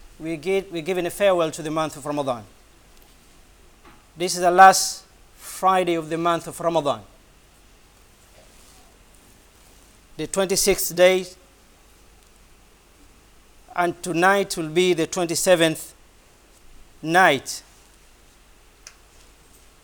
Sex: male